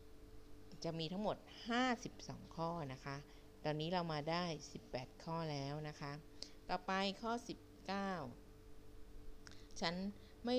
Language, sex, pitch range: Thai, female, 145-190 Hz